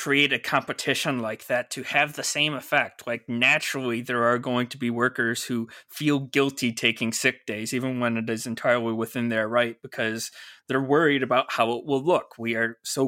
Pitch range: 120-145 Hz